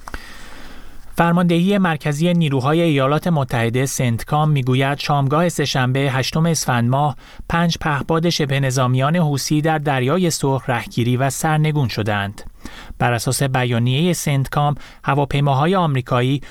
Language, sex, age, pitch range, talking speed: Persian, male, 30-49, 130-160 Hz, 110 wpm